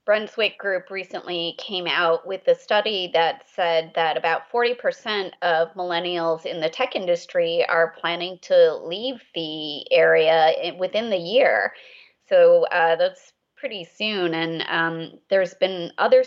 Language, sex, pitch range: English, female, 170-220 Hz